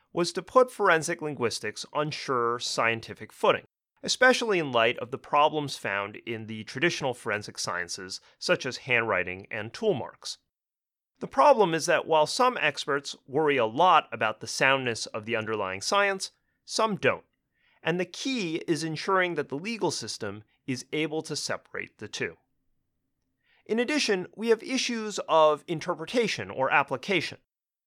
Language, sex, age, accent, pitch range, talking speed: English, male, 30-49, American, 130-200 Hz, 150 wpm